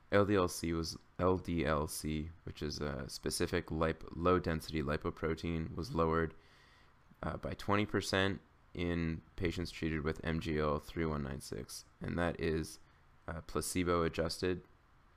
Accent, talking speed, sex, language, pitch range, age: American, 100 wpm, male, English, 75-85 Hz, 20-39